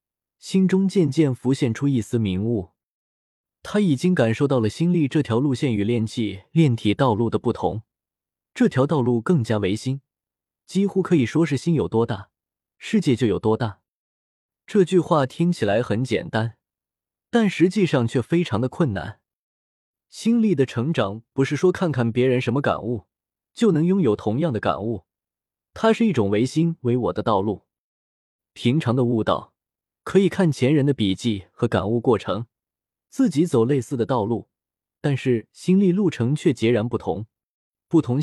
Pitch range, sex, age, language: 110-165 Hz, male, 20-39, Chinese